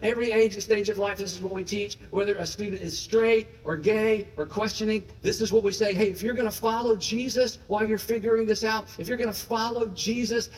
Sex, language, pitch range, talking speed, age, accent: male, English, 190-225 Hz, 245 wpm, 50-69, American